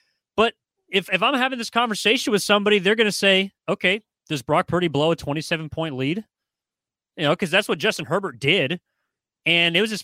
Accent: American